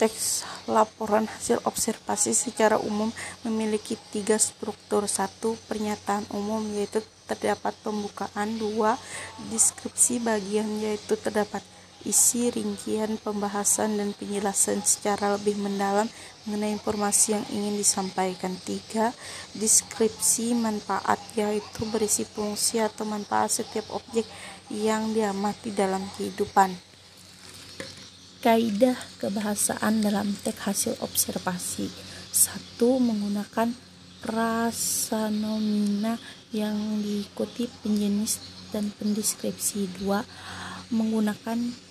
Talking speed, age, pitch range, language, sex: 90 wpm, 20-39, 200-225 Hz, Indonesian, female